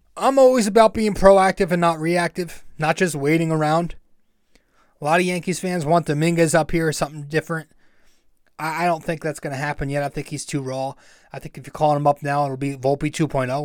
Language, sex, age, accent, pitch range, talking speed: English, male, 20-39, American, 135-170 Hz, 215 wpm